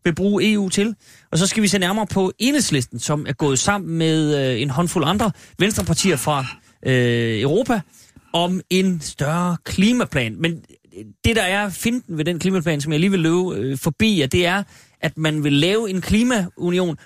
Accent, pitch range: native, 140-190 Hz